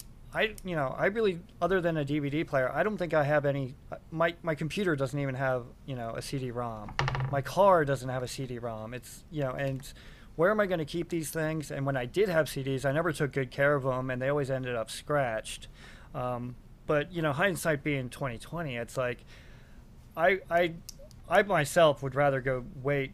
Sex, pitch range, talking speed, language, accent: male, 125-155 Hz, 210 wpm, English, American